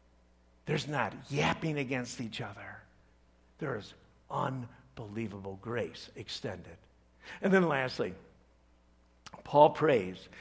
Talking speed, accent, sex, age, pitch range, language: 90 wpm, American, male, 60-79, 135-210 Hz, English